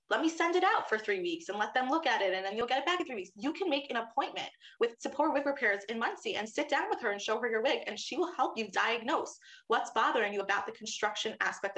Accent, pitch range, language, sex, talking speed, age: American, 210-325 Hz, English, female, 290 wpm, 20-39